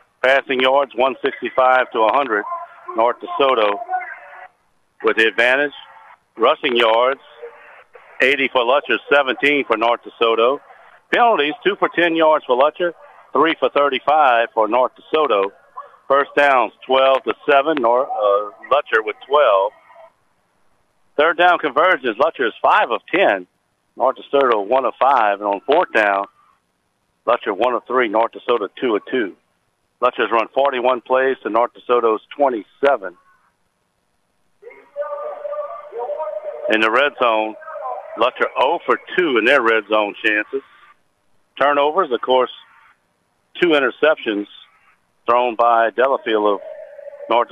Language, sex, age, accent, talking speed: English, male, 60-79, American, 120 wpm